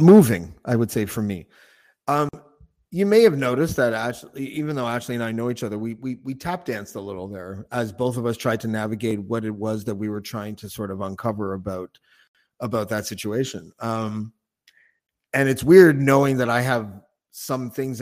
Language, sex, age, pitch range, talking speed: English, male, 30-49, 105-120 Hz, 205 wpm